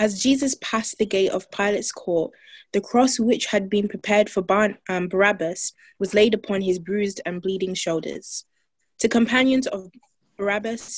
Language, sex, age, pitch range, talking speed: English, female, 20-39, 190-230 Hz, 165 wpm